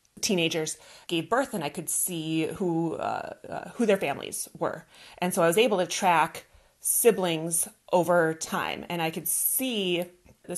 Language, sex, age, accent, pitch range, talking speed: English, female, 30-49, American, 160-190 Hz, 165 wpm